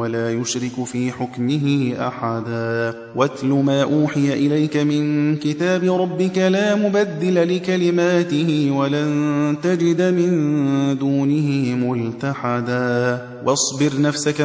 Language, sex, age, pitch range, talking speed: Arabic, male, 30-49, 145-180 Hz, 90 wpm